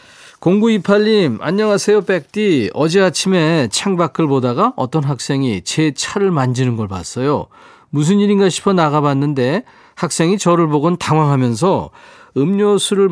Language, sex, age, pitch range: Korean, male, 40-59, 130-175 Hz